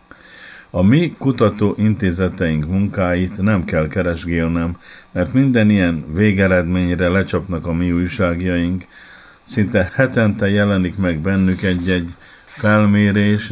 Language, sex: Hungarian, male